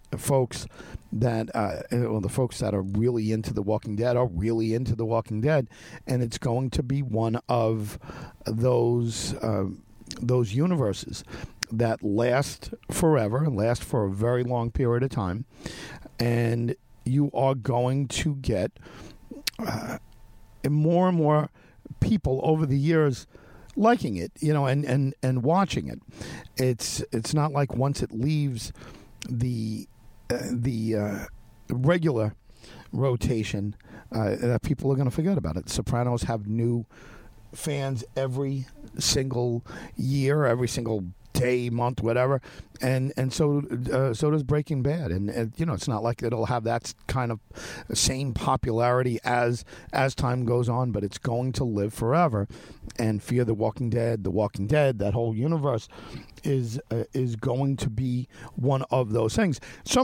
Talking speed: 155 wpm